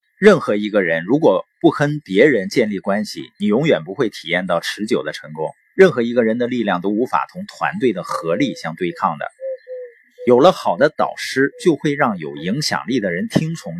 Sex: male